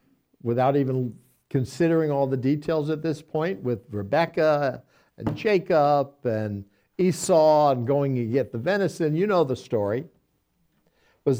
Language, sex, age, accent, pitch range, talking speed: English, male, 60-79, American, 130-170 Hz, 135 wpm